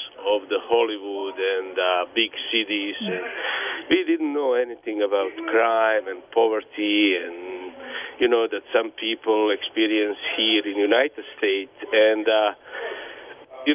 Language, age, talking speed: English, 50-69, 130 wpm